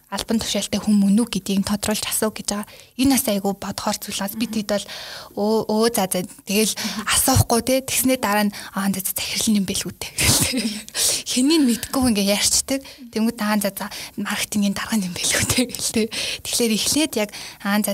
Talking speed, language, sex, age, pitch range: 95 wpm, Russian, female, 20-39, 205-245 Hz